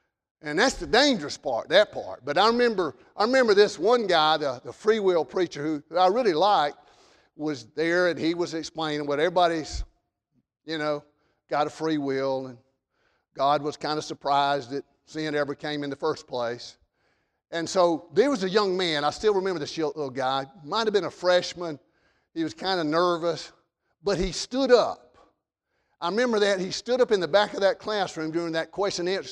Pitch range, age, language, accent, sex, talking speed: 155-210 Hz, 50-69, English, American, male, 200 wpm